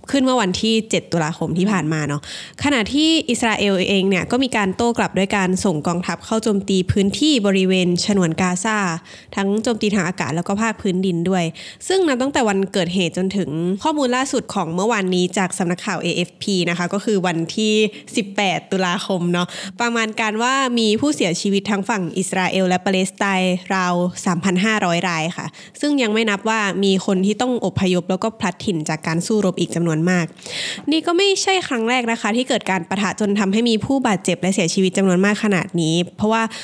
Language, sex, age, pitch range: Thai, female, 20-39, 185-225 Hz